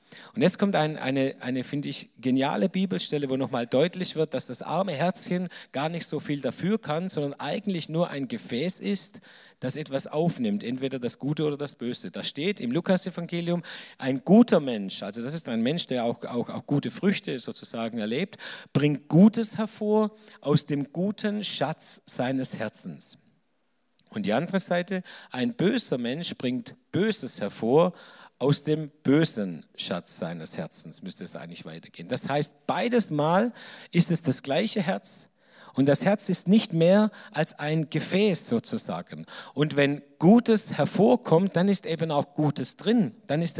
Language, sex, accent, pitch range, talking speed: German, male, German, 145-200 Hz, 165 wpm